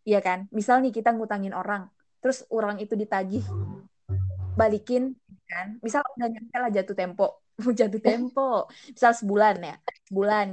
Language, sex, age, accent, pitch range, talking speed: Indonesian, female, 20-39, native, 195-245 Hz, 125 wpm